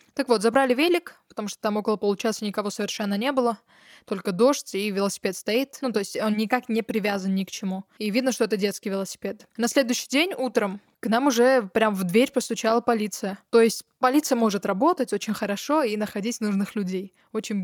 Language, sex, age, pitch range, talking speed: Russian, female, 20-39, 210-265 Hz, 195 wpm